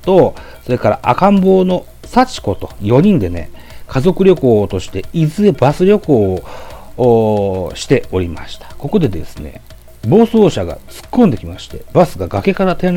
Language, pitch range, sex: Japanese, 95-160 Hz, male